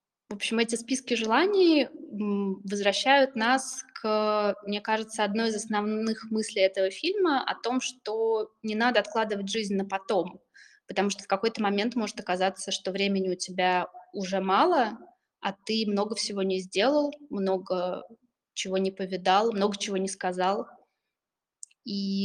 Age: 20-39